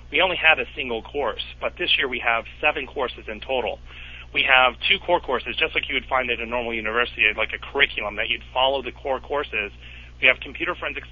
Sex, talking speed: male, 225 wpm